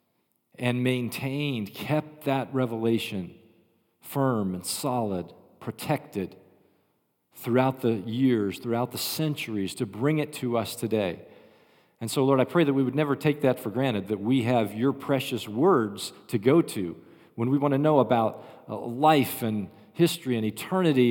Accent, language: American, English